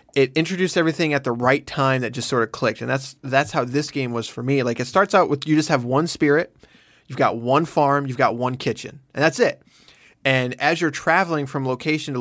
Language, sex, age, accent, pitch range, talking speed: English, male, 20-39, American, 125-155 Hz, 240 wpm